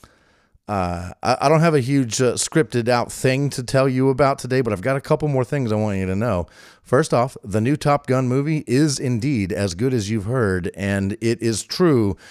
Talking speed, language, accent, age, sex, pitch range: 220 wpm, English, American, 40-59, male, 100-130 Hz